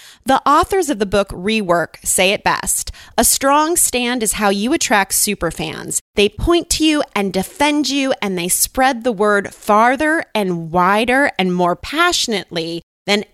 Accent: American